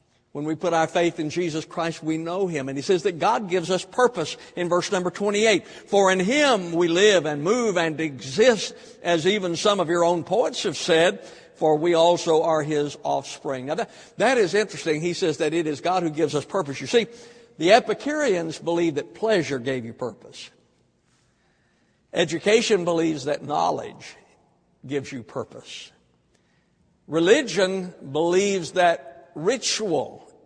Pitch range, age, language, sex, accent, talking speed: 155-195 Hz, 60-79, English, male, American, 165 wpm